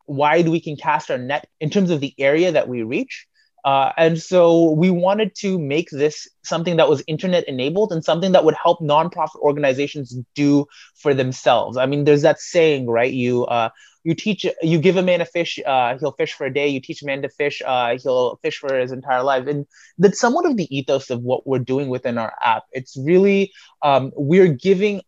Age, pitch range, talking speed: 20-39, 145-180 Hz, 215 wpm